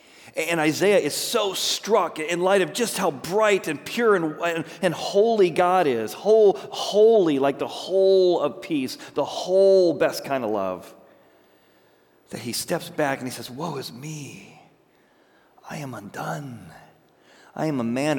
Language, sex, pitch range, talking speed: English, male, 105-170 Hz, 160 wpm